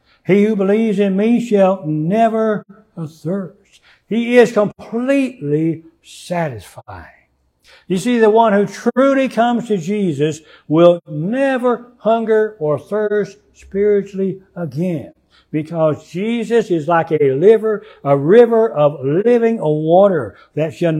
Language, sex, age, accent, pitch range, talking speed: English, male, 60-79, American, 165-220 Hz, 115 wpm